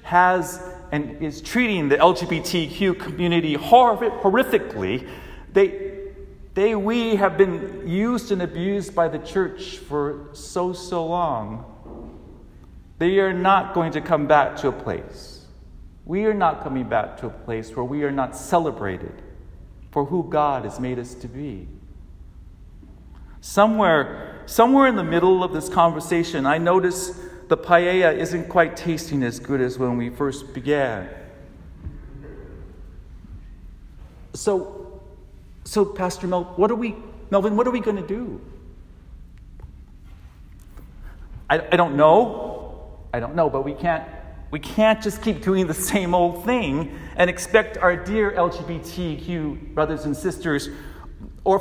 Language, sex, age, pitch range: English, male, 40-59, 120-185 Hz